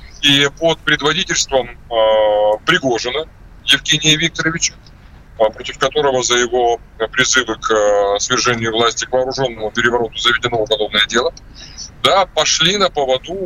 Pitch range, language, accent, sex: 120-155 Hz, Russian, native, male